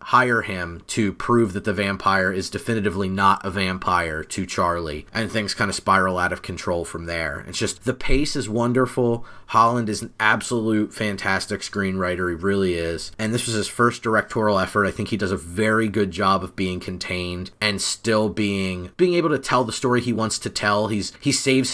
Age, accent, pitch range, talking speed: 30-49, American, 100-120 Hz, 200 wpm